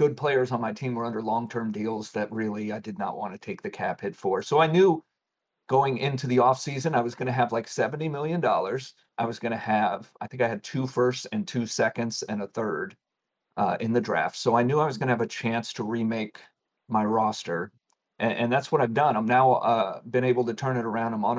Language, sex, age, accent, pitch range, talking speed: English, male, 40-59, American, 115-130 Hz, 245 wpm